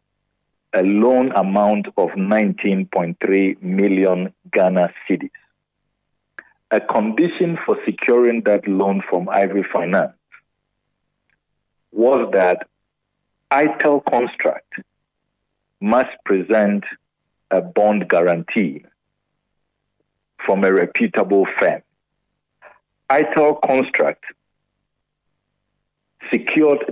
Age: 50-69